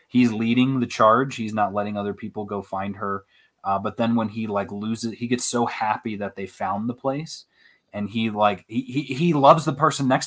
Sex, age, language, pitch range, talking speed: male, 20-39, English, 105-130 Hz, 215 wpm